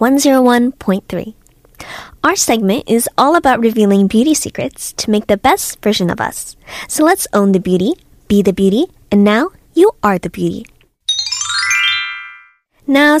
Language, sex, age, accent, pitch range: Korean, female, 10-29, American, 200-275 Hz